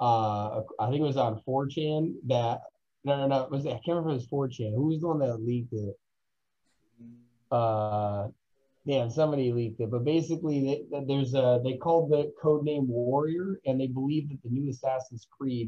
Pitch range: 110-135 Hz